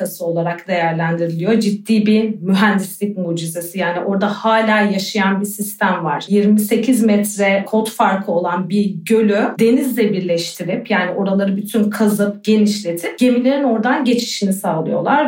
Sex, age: female, 40-59